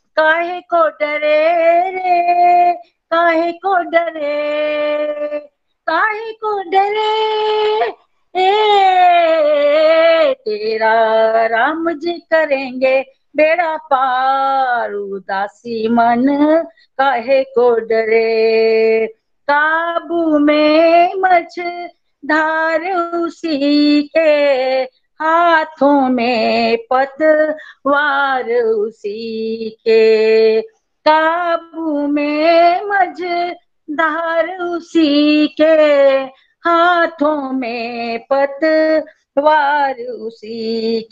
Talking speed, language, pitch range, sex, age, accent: 50 wpm, Hindi, 255-335 Hz, female, 50-69, native